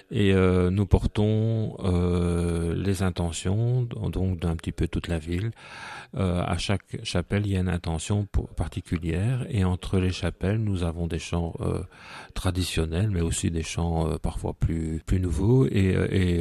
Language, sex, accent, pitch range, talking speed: French, male, French, 85-100 Hz, 170 wpm